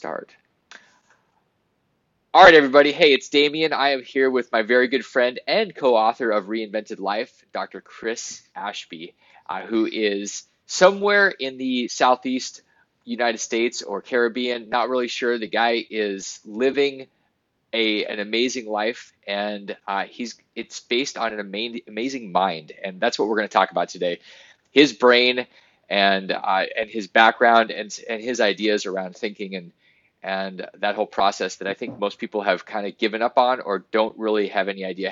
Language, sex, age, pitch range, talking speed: English, male, 20-39, 100-125 Hz, 165 wpm